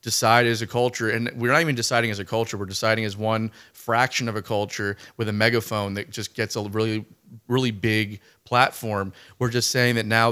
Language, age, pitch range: English, 30-49, 110-125 Hz